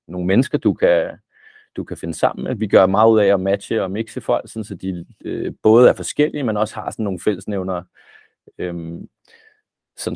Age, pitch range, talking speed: 30-49, 95-115 Hz, 195 wpm